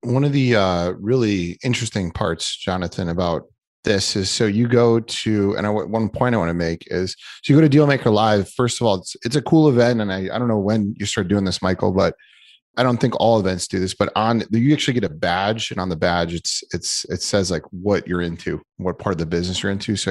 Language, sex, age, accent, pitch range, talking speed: English, male, 30-49, American, 95-120 Hz, 250 wpm